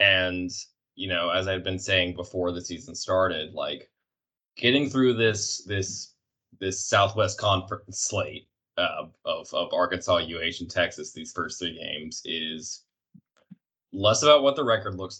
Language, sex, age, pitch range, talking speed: English, male, 20-39, 90-105 Hz, 150 wpm